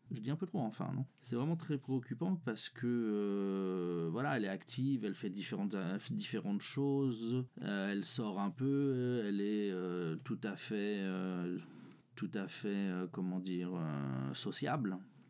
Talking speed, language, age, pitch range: 170 wpm, French, 40-59, 100-140 Hz